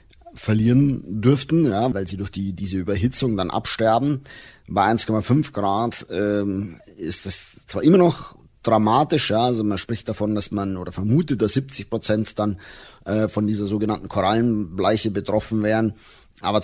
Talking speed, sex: 150 wpm, male